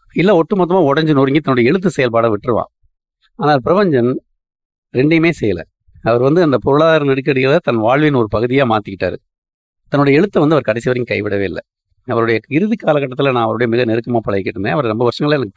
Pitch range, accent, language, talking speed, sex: 110-150 Hz, native, Tamil, 160 wpm, male